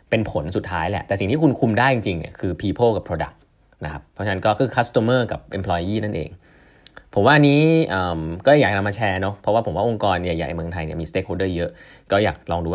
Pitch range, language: 95-130 Hz, Thai